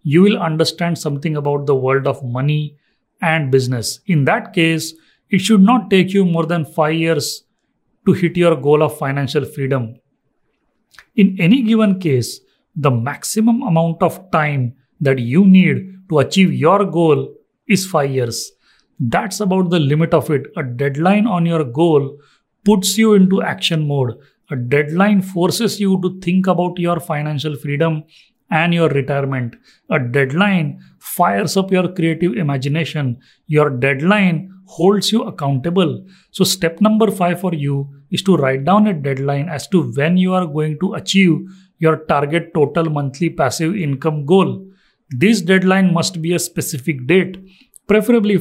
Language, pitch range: English, 145-190 Hz